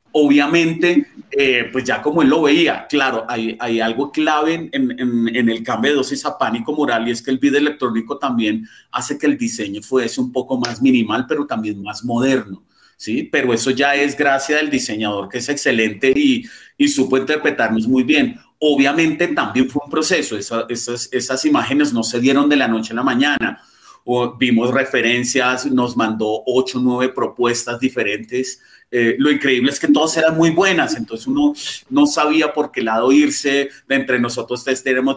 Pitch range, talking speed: 120-155 Hz, 185 wpm